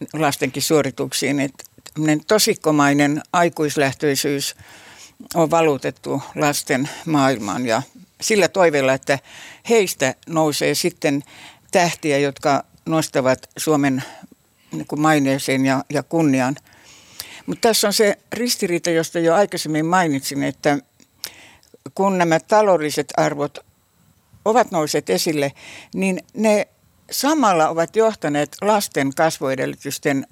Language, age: Finnish, 60-79